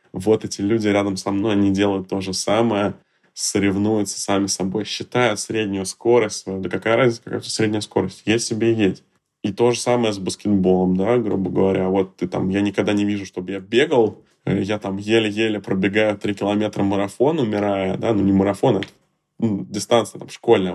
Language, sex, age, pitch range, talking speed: Russian, male, 20-39, 95-110 Hz, 180 wpm